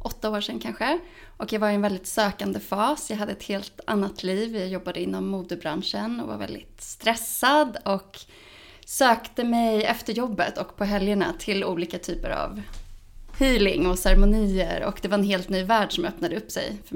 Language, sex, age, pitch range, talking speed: Swedish, female, 20-39, 190-235 Hz, 190 wpm